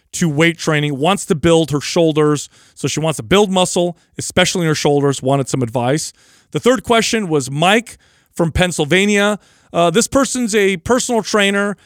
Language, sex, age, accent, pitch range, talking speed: English, male, 40-59, American, 150-195 Hz, 170 wpm